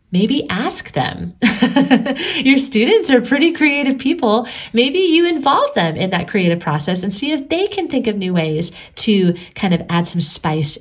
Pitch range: 180-240 Hz